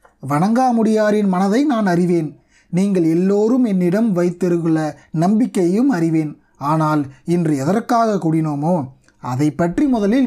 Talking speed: 100 wpm